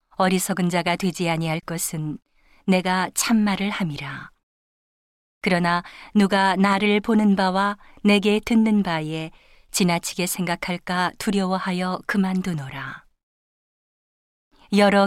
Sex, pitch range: female, 175-200 Hz